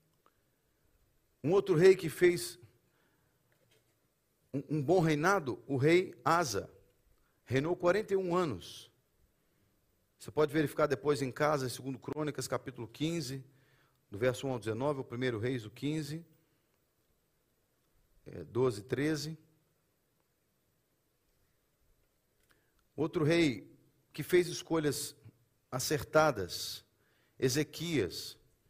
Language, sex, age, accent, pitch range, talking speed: Portuguese, male, 50-69, Brazilian, 120-150 Hz, 90 wpm